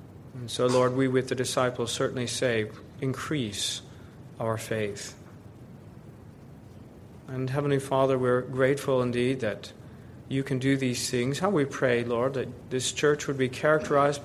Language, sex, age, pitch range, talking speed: English, male, 40-59, 120-145 Hz, 145 wpm